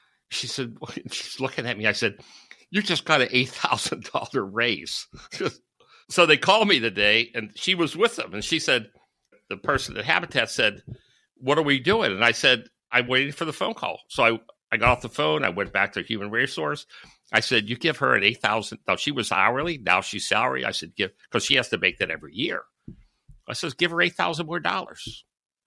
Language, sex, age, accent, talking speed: English, male, 60-79, American, 210 wpm